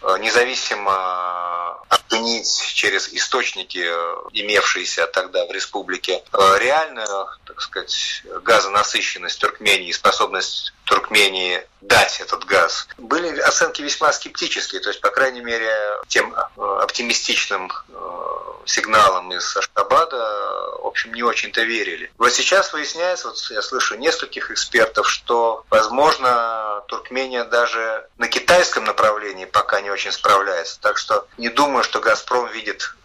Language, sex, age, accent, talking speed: Russian, male, 30-49, native, 115 wpm